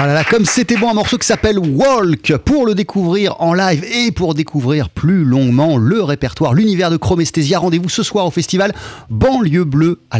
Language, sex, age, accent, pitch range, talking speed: French, male, 30-49, French, 135-205 Hz, 200 wpm